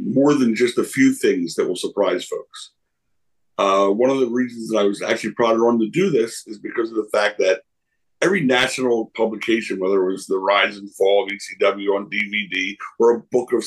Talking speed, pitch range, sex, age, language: 210 wpm, 110-165 Hz, male, 50-69, English